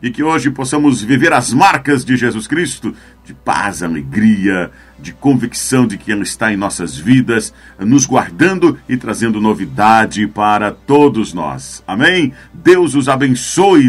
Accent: Brazilian